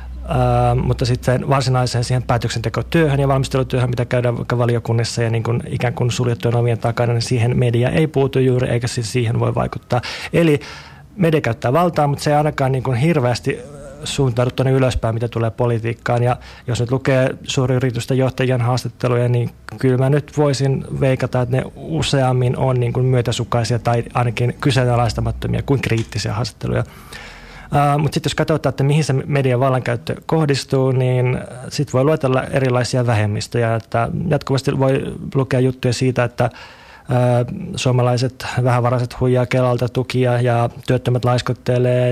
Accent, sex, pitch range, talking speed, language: native, male, 120-130 Hz, 150 wpm, Finnish